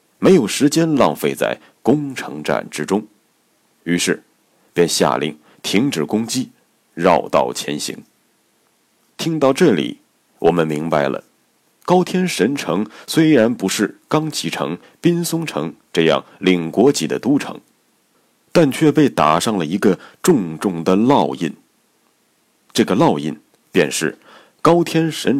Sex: male